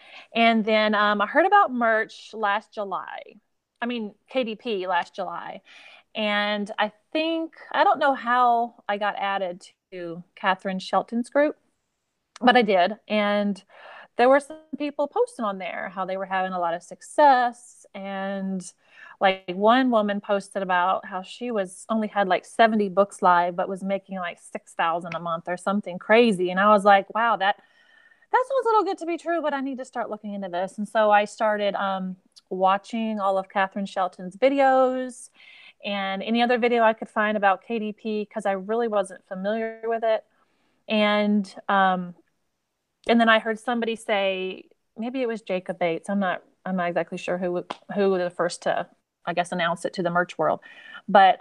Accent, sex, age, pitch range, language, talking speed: American, female, 30-49, 190-235 Hz, English, 180 wpm